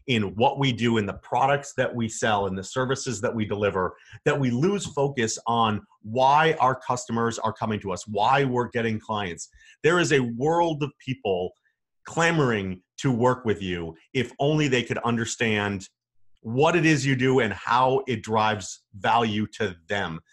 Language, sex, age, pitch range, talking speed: English, male, 30-49, 105-130 Hz, 175 wpm